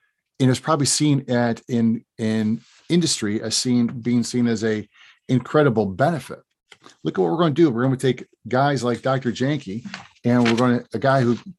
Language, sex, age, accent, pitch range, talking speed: English, male, 40-59, American, 120-145 Hz, 180 wpm